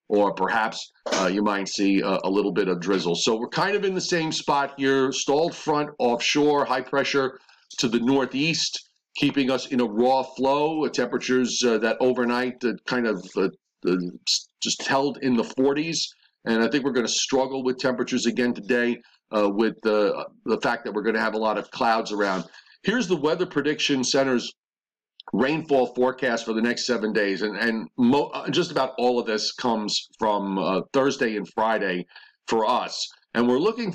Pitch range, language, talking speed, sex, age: 120-150 Hz, English, 185 wpm, male, 50-69